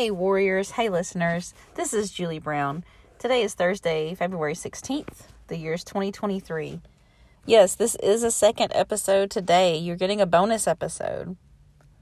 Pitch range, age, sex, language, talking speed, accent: 155-195 Hz, 40-59, female, English, 145 wpm, American